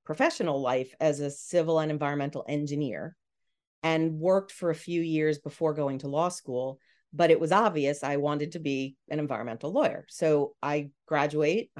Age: 40-59